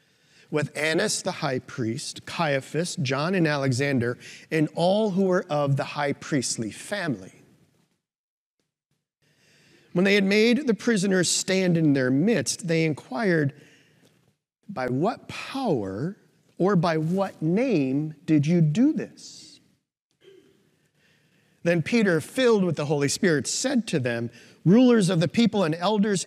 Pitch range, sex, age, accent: 150-205 Hz, male, 40-59, American